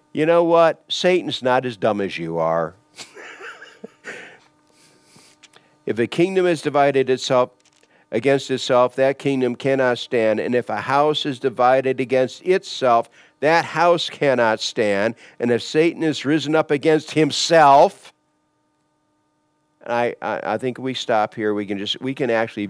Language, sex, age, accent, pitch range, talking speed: English, male, 50-69, American, 105-145 Hz, 145 wpm